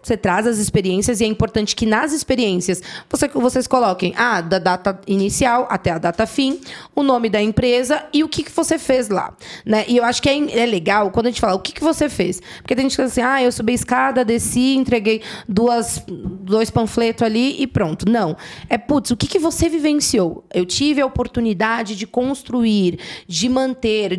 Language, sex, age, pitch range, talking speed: Portuguese, female, 20-39, 215-290 Hz, 210 wpm